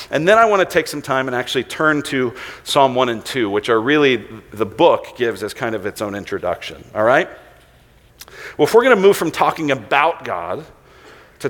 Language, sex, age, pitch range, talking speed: English, male, 50-69, 135-215 Hz, 215 wpm